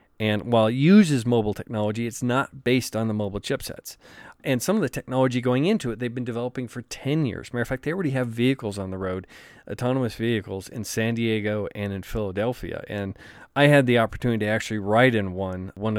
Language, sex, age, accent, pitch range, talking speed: English, male, 40-59, American, 105-130 Hz, 220 wpm